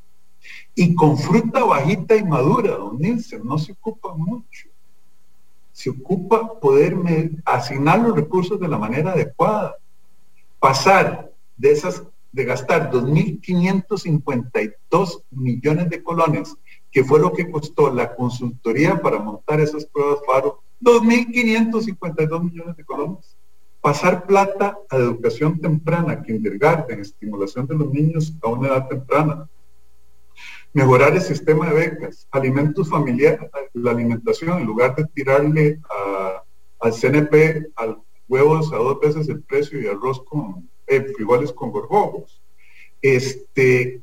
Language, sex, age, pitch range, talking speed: English, male, 50-69, 115-170 Hz, 130 wpm